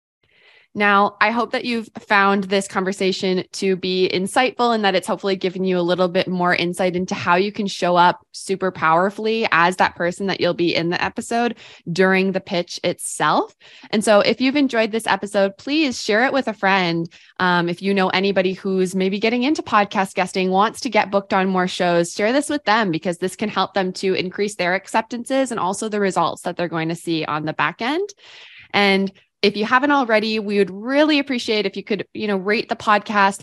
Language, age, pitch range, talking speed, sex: English, 20-39, 180-220 Hz, 210 wpm, female